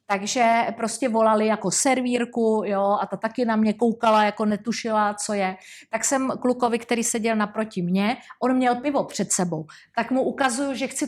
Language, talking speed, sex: Czech, 180 wpm, female